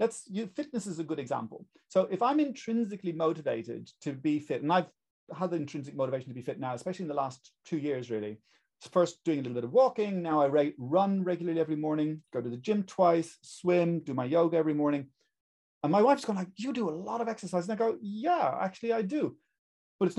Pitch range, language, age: 140-215 Hz, English, 40-59